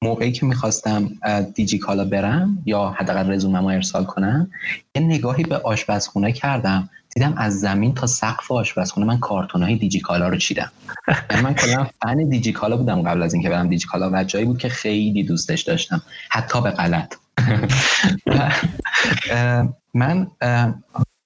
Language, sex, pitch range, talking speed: Persian, male, 100-130 Hz, 140 wpm